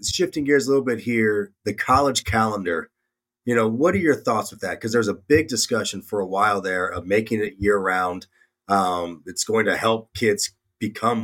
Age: 30-49